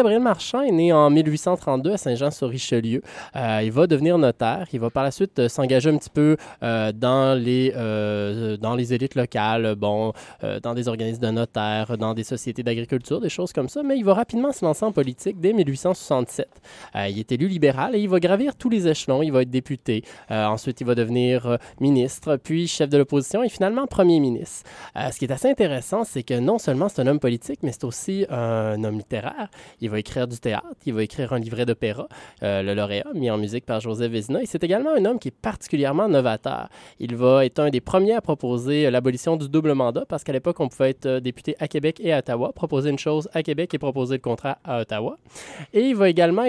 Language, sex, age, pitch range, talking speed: French, male, 20-39, 120-170 Hz, 230 wpm